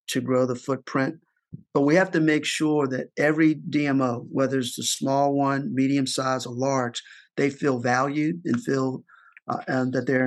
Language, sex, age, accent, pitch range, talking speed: English, male, 50-69, American, 130-145 Hz, 180 wpm